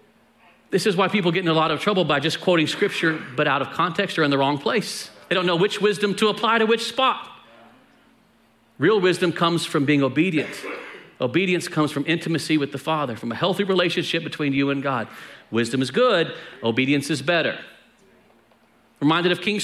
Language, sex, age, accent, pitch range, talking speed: English, male, 40-59, American, 165-215 Hz, 195 wpm